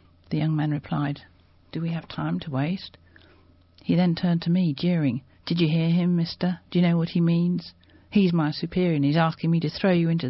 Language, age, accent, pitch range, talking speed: English, 50-69, British, 140-175 Hz, 220 wpm